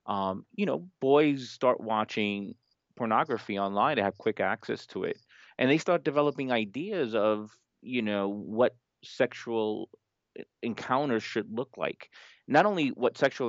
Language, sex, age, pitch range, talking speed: English, male, 30-49, 105-130 Hz, 140 wpm